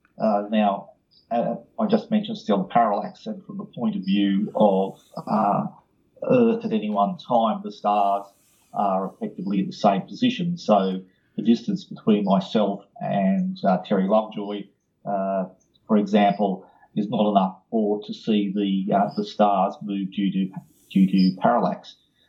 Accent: Australian